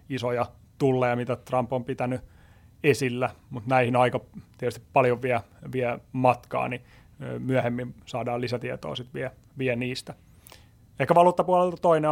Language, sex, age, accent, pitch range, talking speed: Finnish, male, 30-49, native, 120-130 Hz, 130 wpm